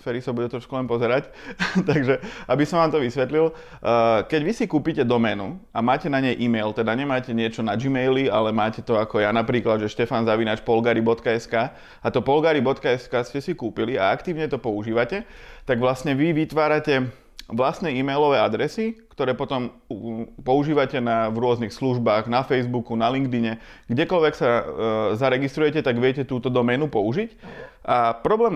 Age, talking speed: 30-49, 155 wpm